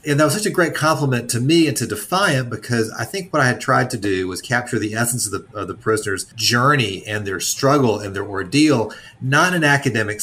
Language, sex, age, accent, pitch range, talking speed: English, male, 40-59, American, 105-130 Hz, 235 wpm